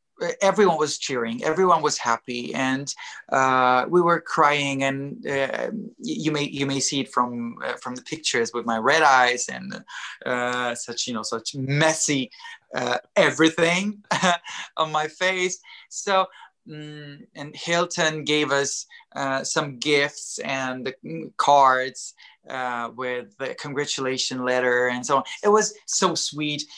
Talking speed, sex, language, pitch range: 140 wpm, male, English, 125-160 Hz